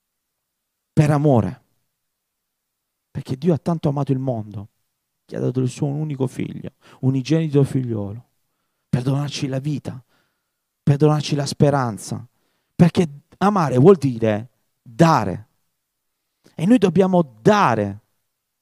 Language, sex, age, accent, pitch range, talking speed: Italian, male, 40-59, native, 140-200 Hz, 115 wpm